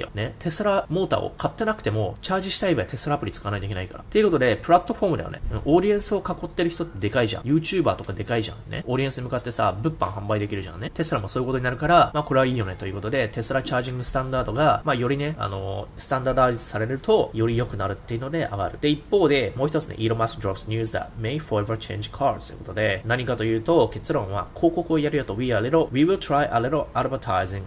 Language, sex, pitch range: Japanese, male, 105-150 Hz